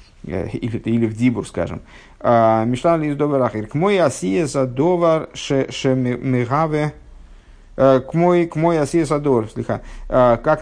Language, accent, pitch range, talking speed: Russian, native, 110-140 Hz, 105 wpm